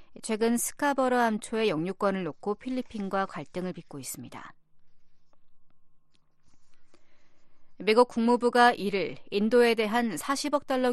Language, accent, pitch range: Korean, native, 190-245 Hz